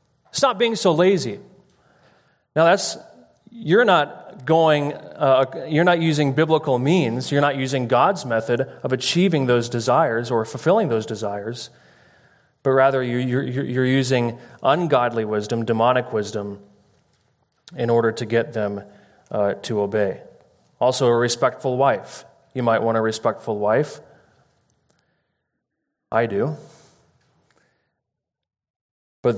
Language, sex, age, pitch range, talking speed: English, male, 30-49, 110-135 Hz, 120 wpm